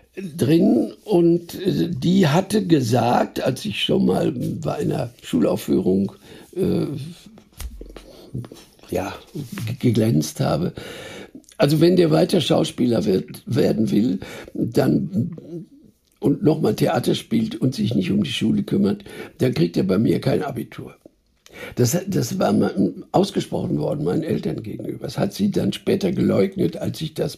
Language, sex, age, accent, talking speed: German, male, 60-79, German, 135 wpm